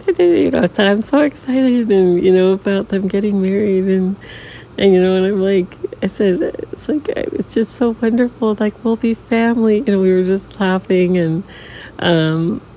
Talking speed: 190 wpm